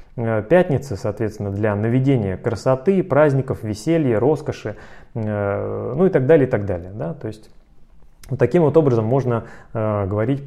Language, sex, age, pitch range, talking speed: Russian, male, 20-39, 110-140 Hz, 120 wpm